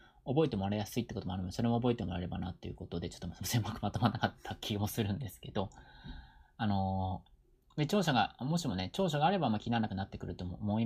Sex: male